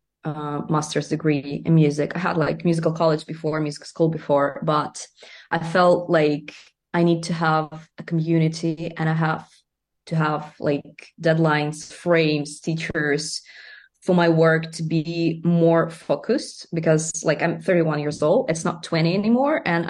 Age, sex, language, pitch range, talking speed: 20-39, female, English, 155-175 Hz, 155 wpm